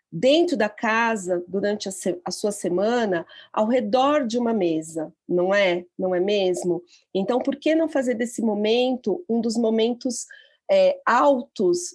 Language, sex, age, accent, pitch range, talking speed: Portuguese, female, 40-59, Brazilian, 200-255 Hz, 145 wpm